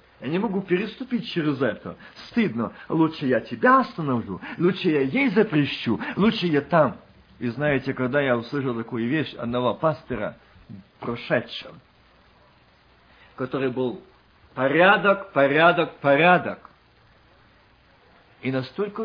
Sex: male